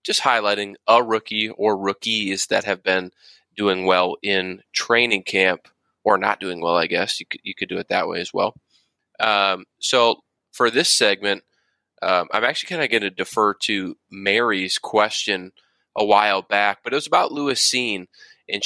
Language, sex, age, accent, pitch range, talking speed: English, male, 20-39, American, 95-115 Hz, 180 wpm